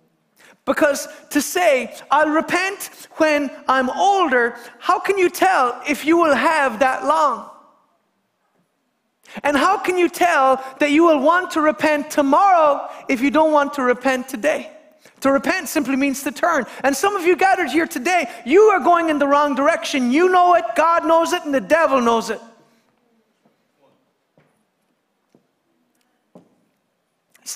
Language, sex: English, male